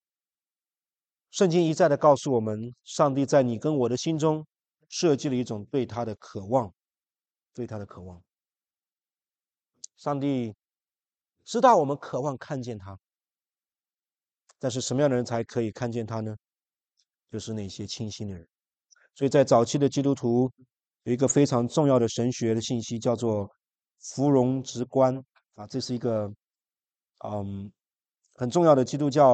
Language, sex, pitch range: English, male, 115-140 Hz